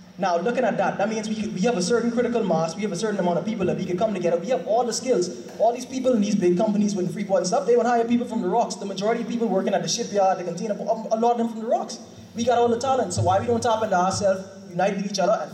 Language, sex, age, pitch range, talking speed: English, male, 20-39, 170-215 Hz, 315 wpm